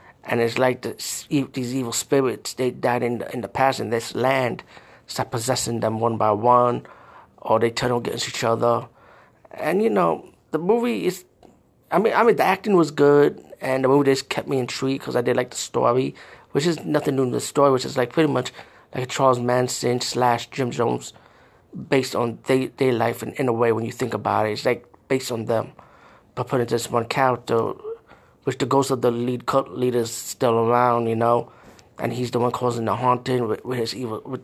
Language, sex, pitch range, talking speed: English, male, 120-135 Hz, 215 wpm